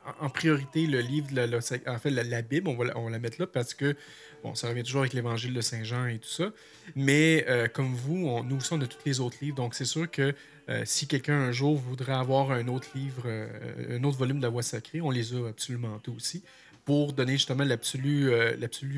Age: 30-49